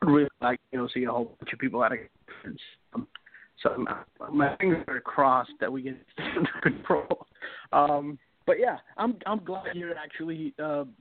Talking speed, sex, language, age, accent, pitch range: 190 wpm, male, English, 30-49, American, 135-180 Hz